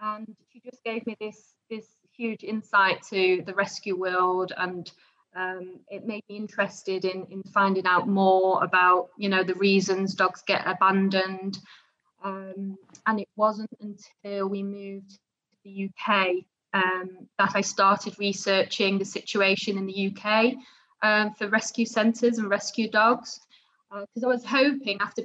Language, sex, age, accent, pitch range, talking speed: English, female, 20-39, British, 190-220 Hz, 155 wpm